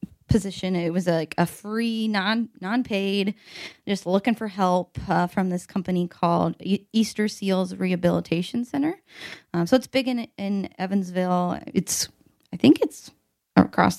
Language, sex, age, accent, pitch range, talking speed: English, female, 20-39, American, 175-215 Hz, 150 wpm